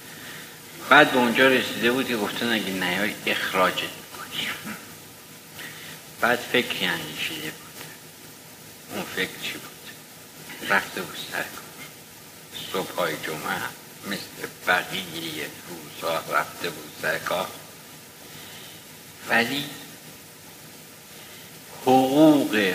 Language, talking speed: Persian, 75 wpm